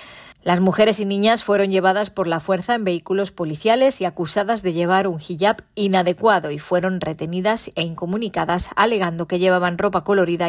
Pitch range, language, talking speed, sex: 175-205 Hz, Spanish, 165 wpm, female